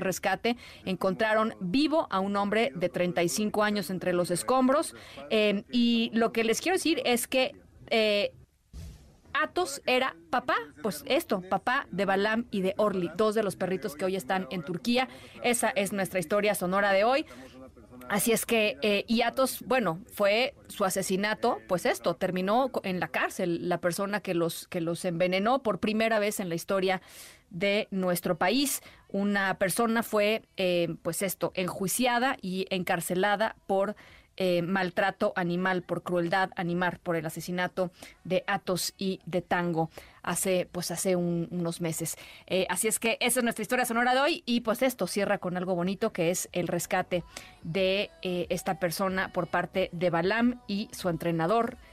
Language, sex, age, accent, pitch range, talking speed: Spanish, female, 30-49, Mexican, 180-225 Hz, 165 wpm